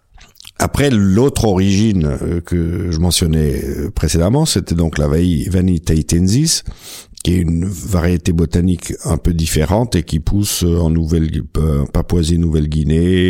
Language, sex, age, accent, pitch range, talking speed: French, male, 60-79, French, 80-95 Hz, 115 wpm